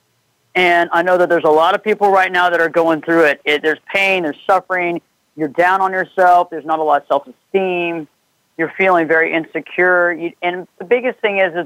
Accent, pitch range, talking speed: American, 170-215 Hz, 215 wpm